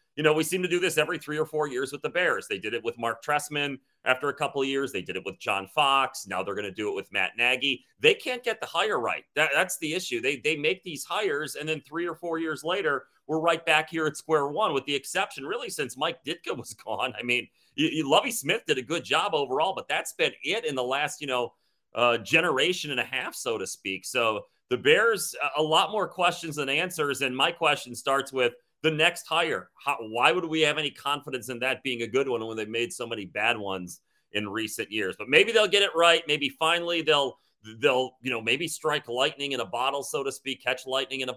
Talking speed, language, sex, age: 250 wpm, English, male, 30-49